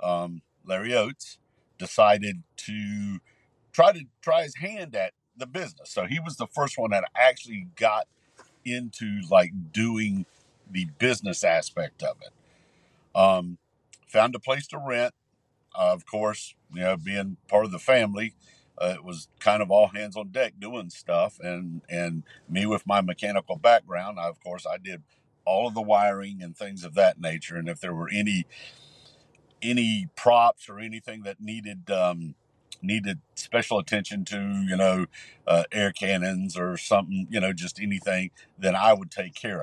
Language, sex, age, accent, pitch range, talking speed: English, male, 60-79, American, 95-120 Hz, 165 wpm